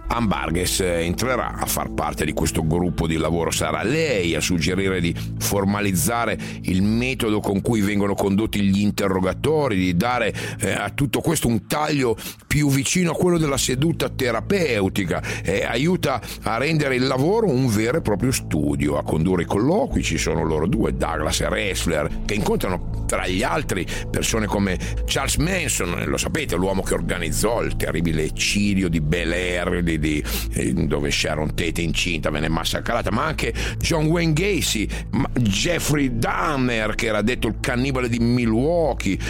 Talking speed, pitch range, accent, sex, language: 155 wpm, 90-125 Hz, native, male, Italian